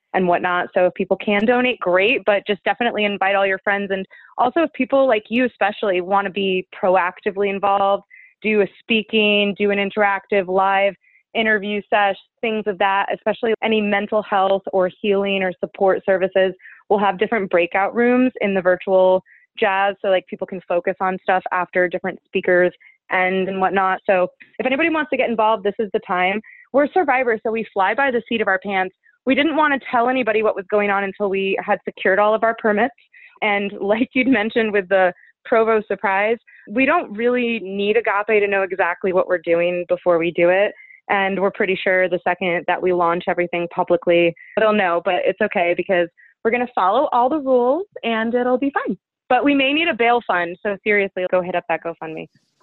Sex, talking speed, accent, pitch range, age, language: female, 200 wpm, American, 185-225 Hz, 20-39, English